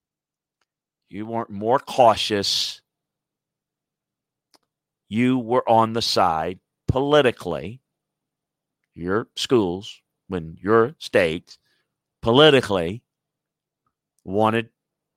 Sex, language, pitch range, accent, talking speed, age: male, English, 105-140 Hz, American, 65 wpm, 50-69